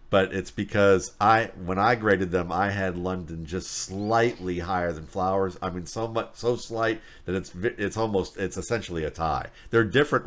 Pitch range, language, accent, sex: 85-105 Hz, English, American, male